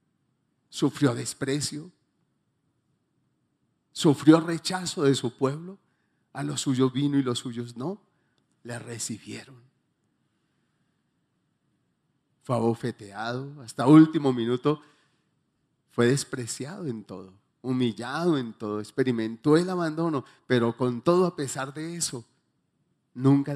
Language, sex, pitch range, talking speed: Spanish, male, 125-180 Hz, 100 wpm